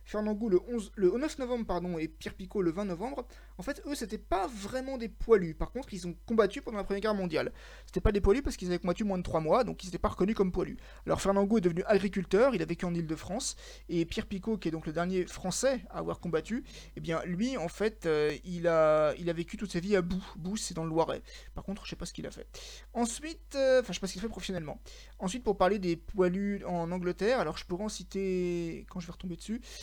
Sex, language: male, French